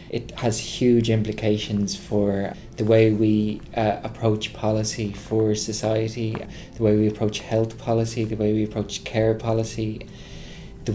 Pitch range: 105-115 Hz